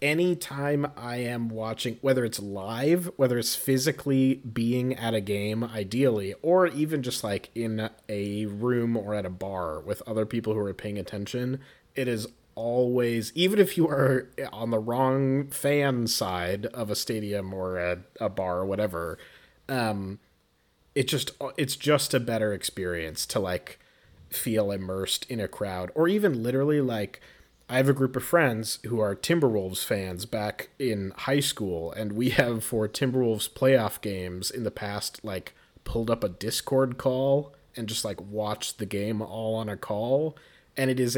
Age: 30-49